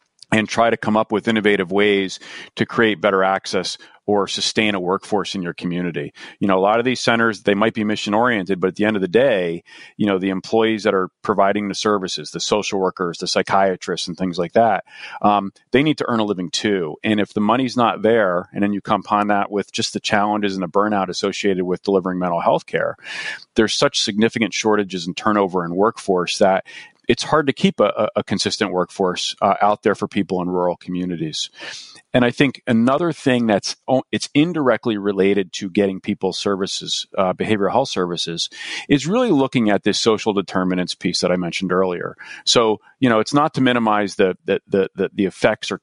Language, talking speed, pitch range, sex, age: English, 205 wpm, 95-110 Hz, male, 40-59